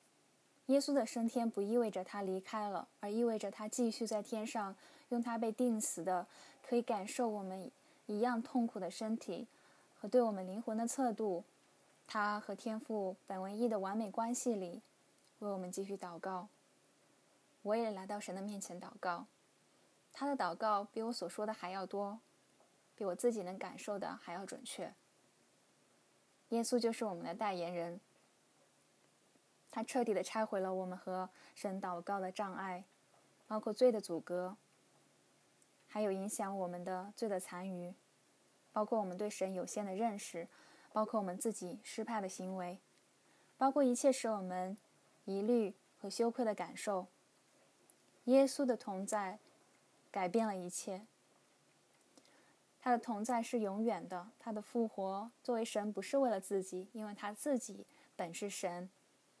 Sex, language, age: female, English, 10-29